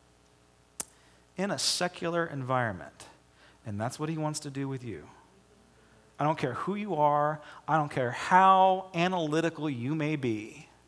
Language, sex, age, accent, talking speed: English, male, 40-59, American, 150 wpm